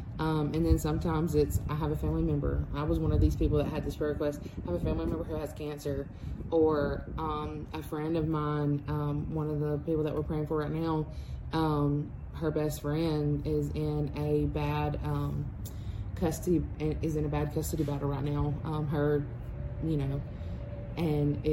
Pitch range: 145-160 Hz